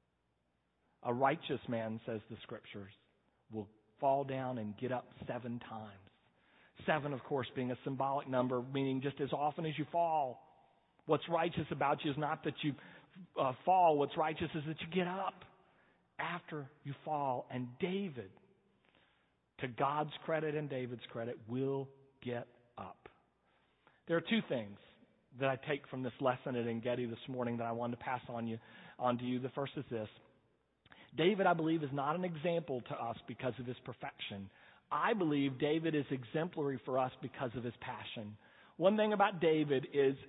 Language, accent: English, American